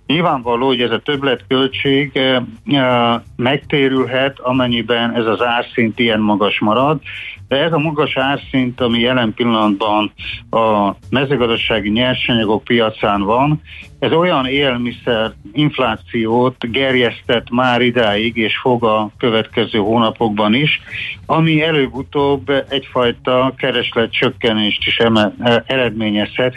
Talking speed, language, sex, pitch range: 115 wpm, Hungarian, male, 110-130 Hz